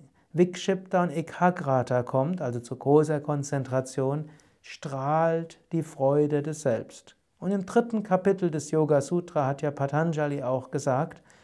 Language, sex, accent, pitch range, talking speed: German, male, German, 135-170 Hz, 130 wpm